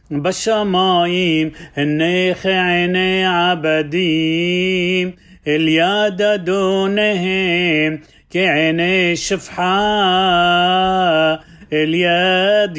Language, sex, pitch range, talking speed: Hebrew, male, 160-185 Hz, 45 wpm